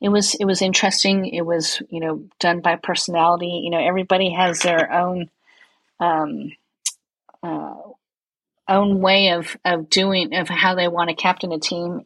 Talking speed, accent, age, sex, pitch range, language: 165 wpm, American, 40-59, female, 165-190 Hz, English